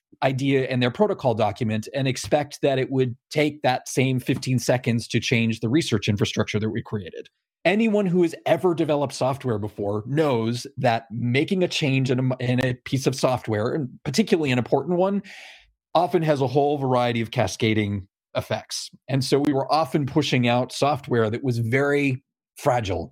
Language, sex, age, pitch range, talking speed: English, male, 30-49, 120-160 Hz, 170 wpm